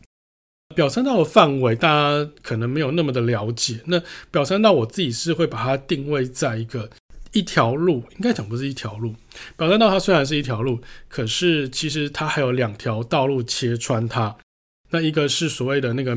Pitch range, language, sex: 125-155 Hz, Chinese, male